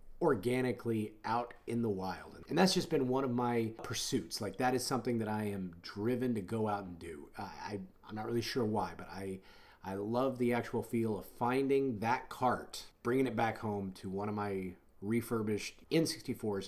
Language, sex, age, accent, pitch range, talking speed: English, male, 30-49, American, 100-130 Hz, 200 wpm